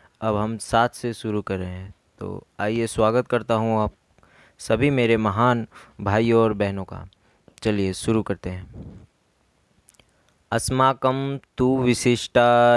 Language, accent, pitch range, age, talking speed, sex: Hindi, native, 100-120 Hz, 20-39, 125 wpm, male